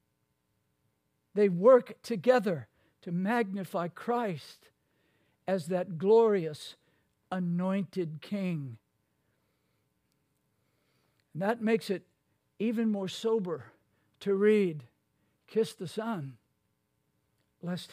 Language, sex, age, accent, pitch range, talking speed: English, male, 60-79, American, 160-205 Hz, 75 wpm